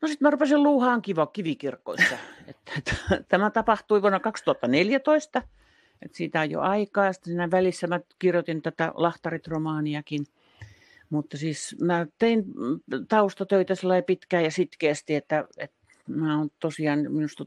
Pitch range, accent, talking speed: 140-185 Hz, native, 125 wpm